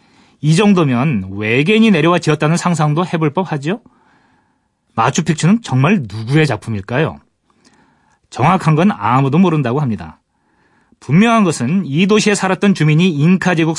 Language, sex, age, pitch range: Korean, male, 40-59, 135-195 Hz